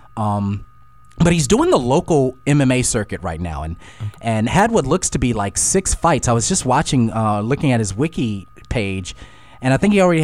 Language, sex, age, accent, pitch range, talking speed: English, male, 30-49, American, 115-160 Hz, 205 wpm